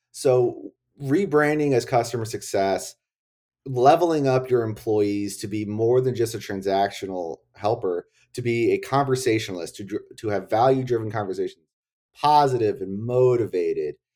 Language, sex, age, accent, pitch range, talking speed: English, male, 30-49, American, 110-145 Hz, 125 wpm